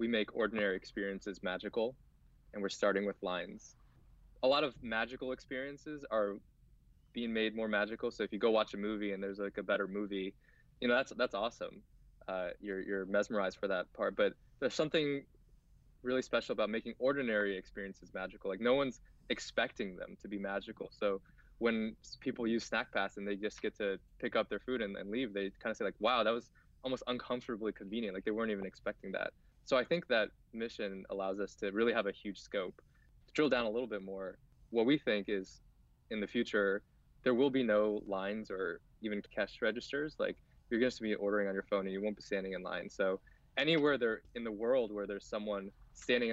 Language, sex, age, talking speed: English, male, 20-39, 205 wpm